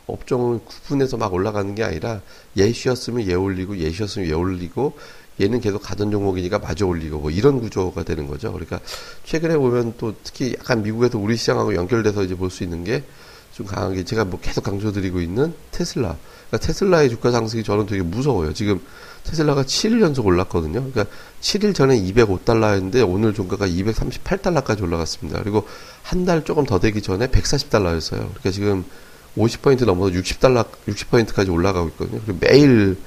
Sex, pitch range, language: male, 90-120 Hz, Korean